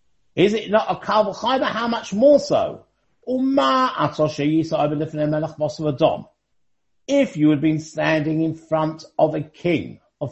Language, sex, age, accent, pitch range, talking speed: English, male, 50-69, British, 155-220 Hz, 115 wpm